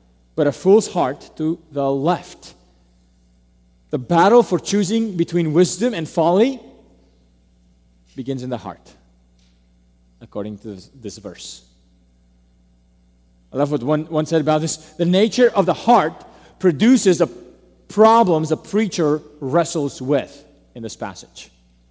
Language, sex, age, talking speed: English, male, 40-59, 125 wpm